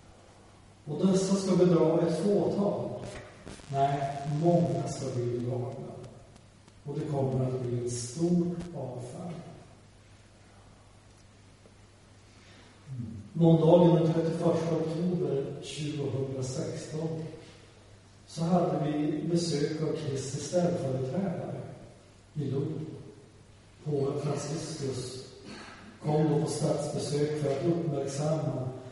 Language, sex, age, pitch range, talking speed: Swedish, male, 40-59, 120-170 Hz, 90 wpm